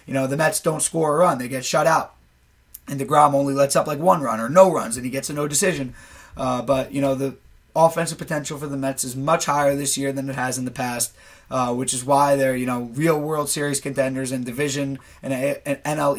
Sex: male